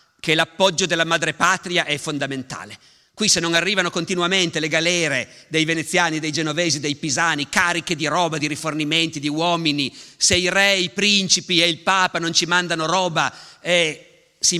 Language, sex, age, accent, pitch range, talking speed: Italian, male, 50-69, native, 145-180 Hz, 175 wpm